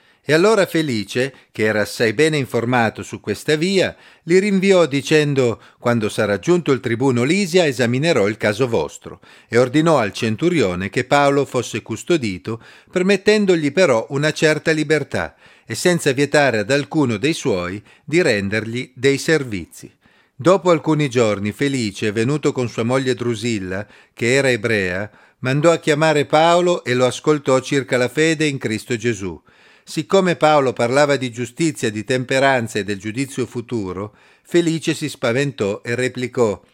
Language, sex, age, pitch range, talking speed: Italian, male, 40-59, 115-155 Hz, 145 wpm